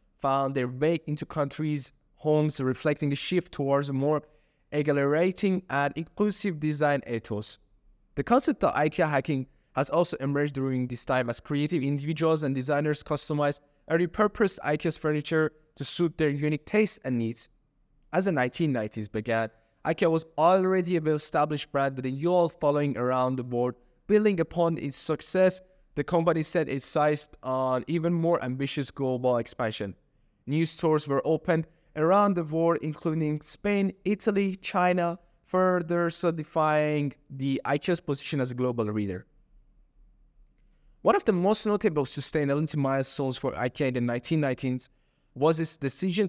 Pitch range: 135-170 Hz